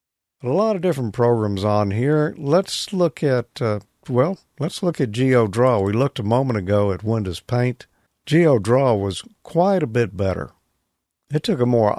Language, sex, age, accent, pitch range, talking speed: English, male, 50-69, American, 95-125 Hz, 170 wpm